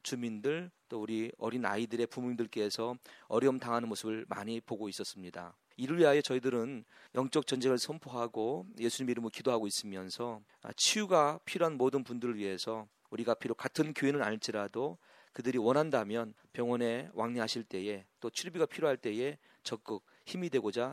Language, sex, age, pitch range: Korean, male, 40-59, 110-140 Hz